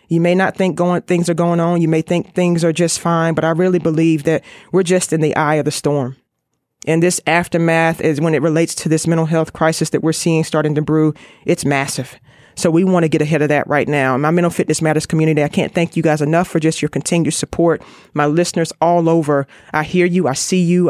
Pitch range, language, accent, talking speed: 155-180 Hz, English, American, 245 wpm